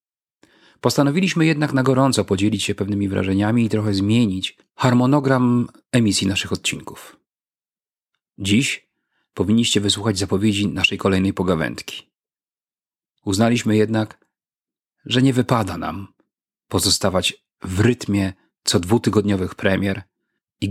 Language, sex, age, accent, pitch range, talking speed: Polish, male, 40-59, native, 95-115 Hz, 100 wpm